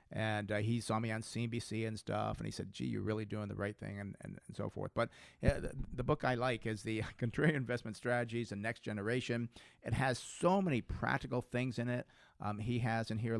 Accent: American